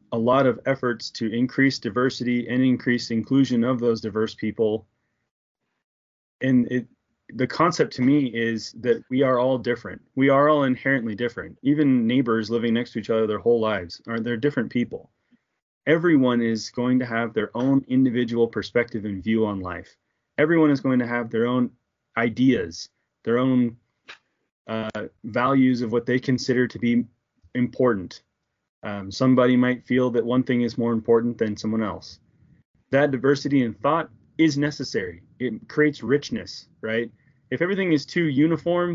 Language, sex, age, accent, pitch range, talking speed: English, male, 20-39, American, 115-135 Hz, 160 wpm